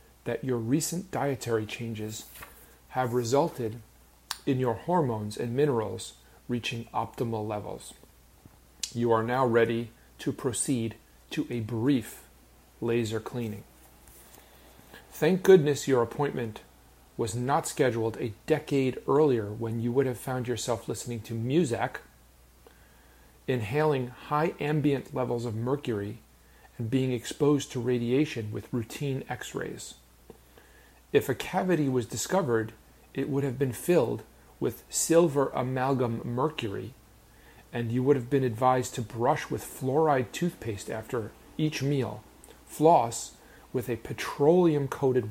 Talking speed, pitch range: 120 wpm, 110-140 Hz